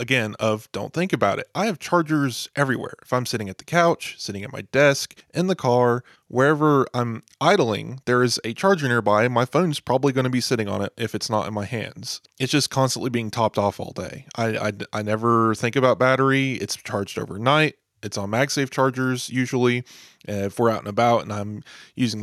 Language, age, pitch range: English, 20-39, 105-130 Hz